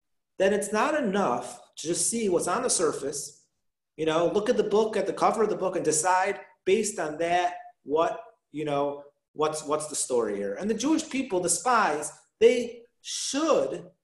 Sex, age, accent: male, 40-59, American